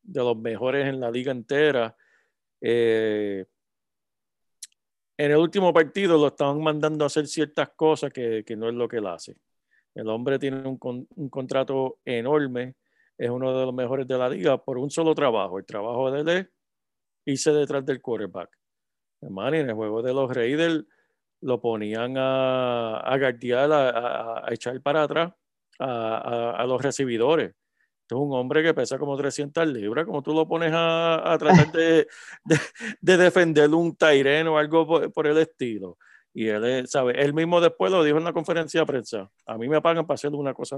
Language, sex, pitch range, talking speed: Spanish, male, 125-155 Hz, 180 wpm